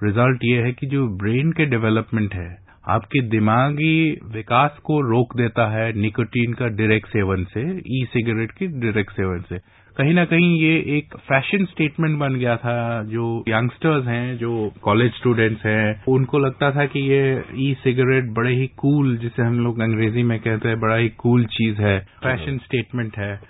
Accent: Indian